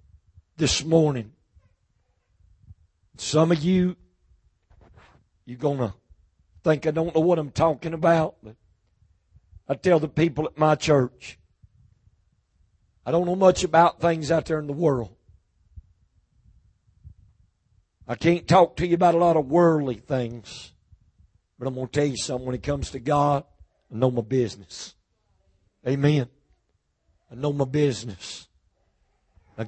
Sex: male